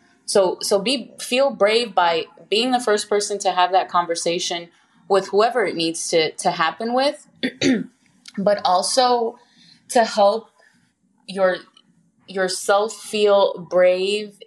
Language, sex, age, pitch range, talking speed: English, female, 20-39, 175-225 Hz, 125 wpm